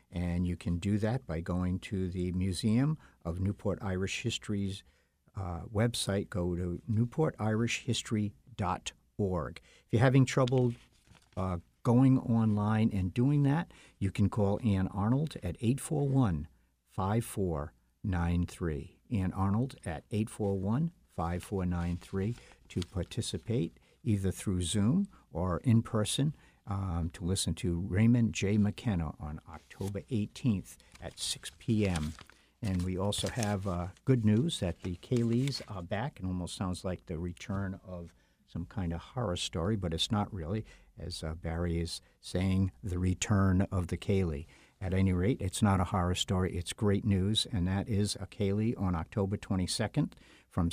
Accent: American